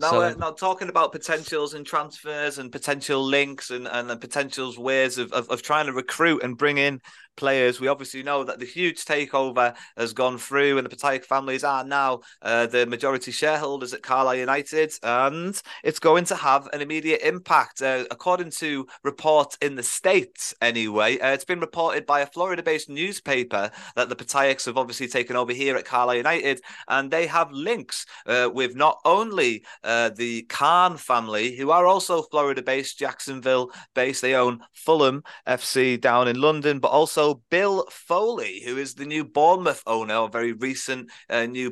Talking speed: 175 wpm